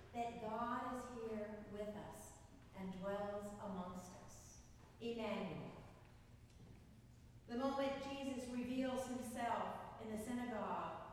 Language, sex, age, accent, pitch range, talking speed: English, female, 50-69, American, 225-265 Hz, 100 wpm